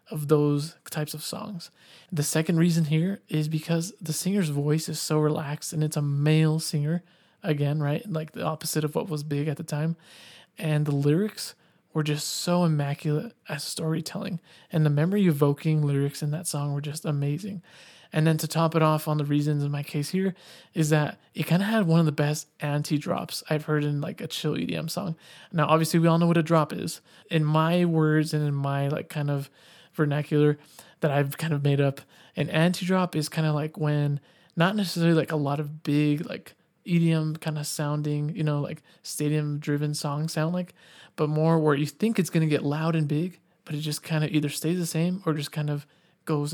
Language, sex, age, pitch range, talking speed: English, male, 20-39, 150-170 Hz, 215 wpm